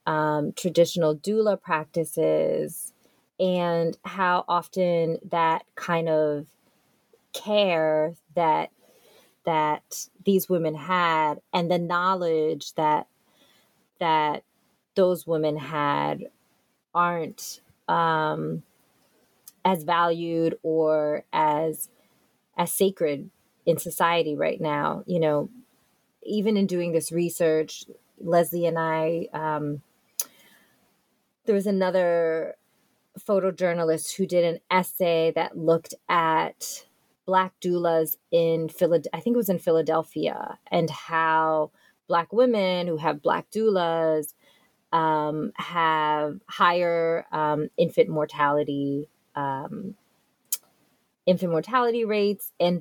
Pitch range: 155-180 Hz